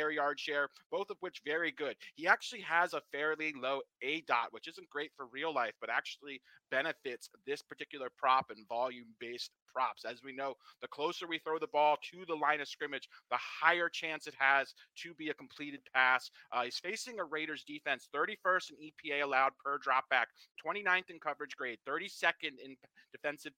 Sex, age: male, 30-49